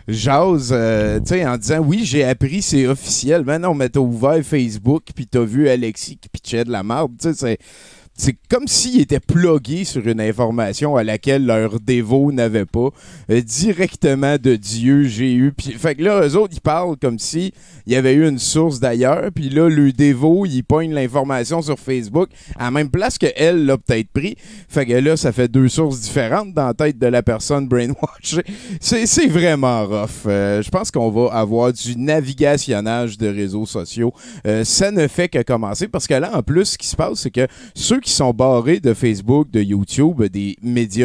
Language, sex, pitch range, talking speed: French, male, 115-155 Hz, 205 wpm